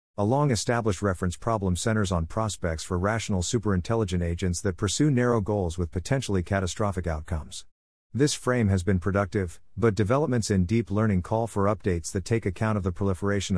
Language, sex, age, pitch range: English, male, 50-69, 90-115 Hz